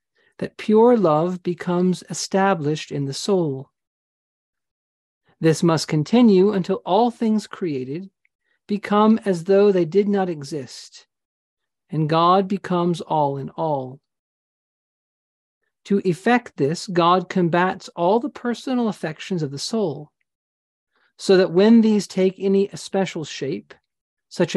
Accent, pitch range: American, 155-205 Hz